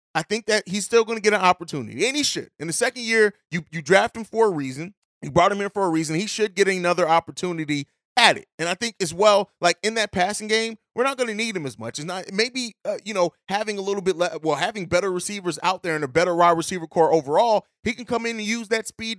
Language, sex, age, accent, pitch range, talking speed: English, male, 30-49, American, 155-205 Hz, 275 wpm